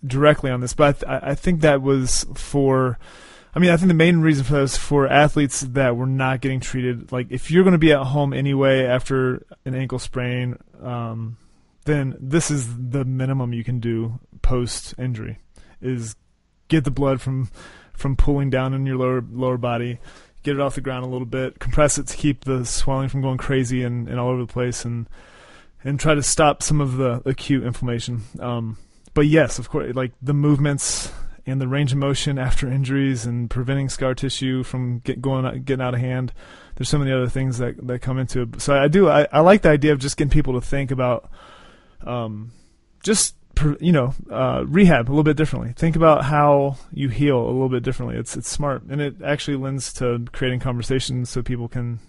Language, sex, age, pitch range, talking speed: English, male, 30-49, 125-145 Hz, 210 wpm